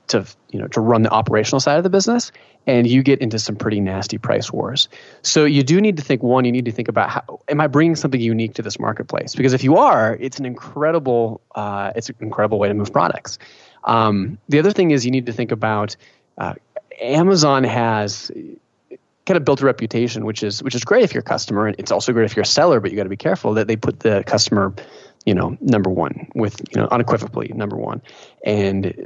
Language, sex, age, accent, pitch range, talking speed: English, male, 30-49, American, 110-135 Hz, 235 wpm